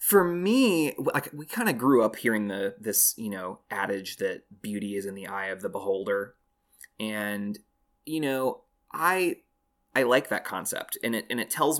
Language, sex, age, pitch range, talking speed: English, male, 20-39, 105-130 Hz, 185 wpm